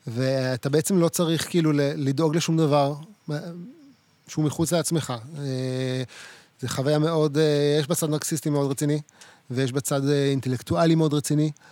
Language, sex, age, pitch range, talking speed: Hebrew, male, 30-49, 135-160 Hz, 135 wpm